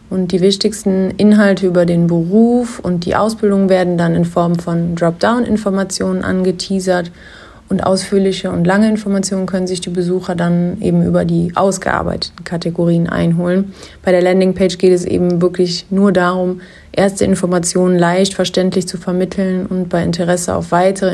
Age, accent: 30-49, German